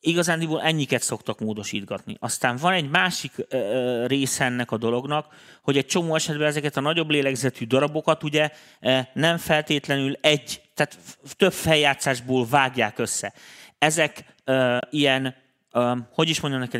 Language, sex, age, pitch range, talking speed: Hungarian, male, 30-49, 115-150 Hz, 130 wpm